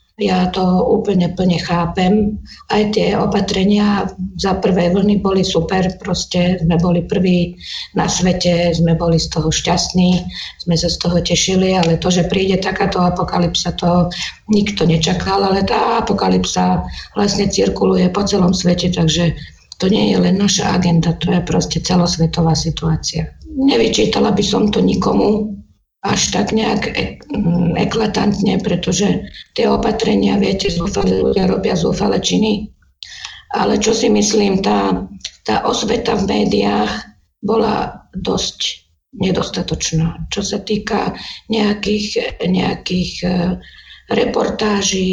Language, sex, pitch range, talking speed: Slovak, female, 170-210 Hz, 125 wpm